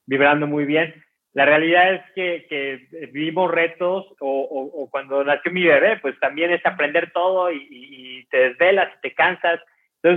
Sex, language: male, Spanish